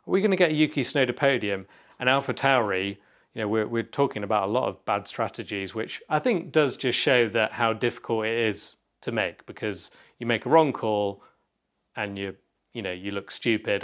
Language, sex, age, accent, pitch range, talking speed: English, male, 30-49, British, 100-120 Hz, 215 wpm